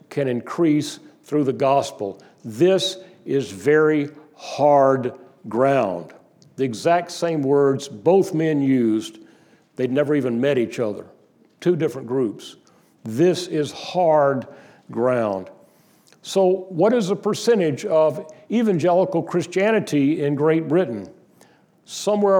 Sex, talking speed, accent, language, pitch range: male, 115 wpm, American, English, 155-205 Hz